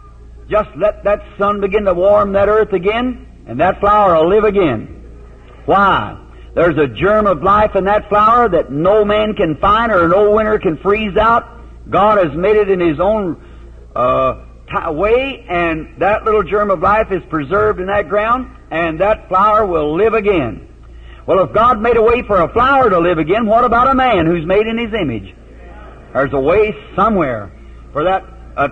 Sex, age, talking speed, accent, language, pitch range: male, 60-79, 190 wpm, American, English, 155-215 Hz